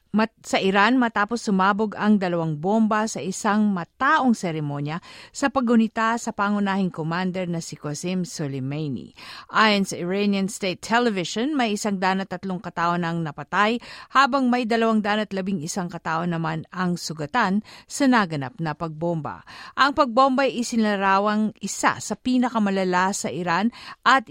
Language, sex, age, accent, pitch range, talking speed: Filipino, female, 50-69, native, 175-220 Hz, 130 wpm